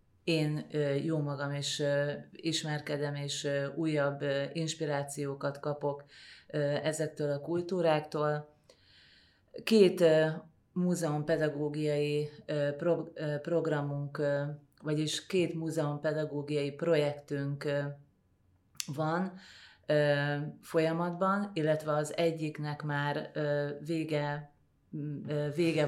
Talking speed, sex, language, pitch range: 65 wpm, female, Hungarian, 145-160 Hz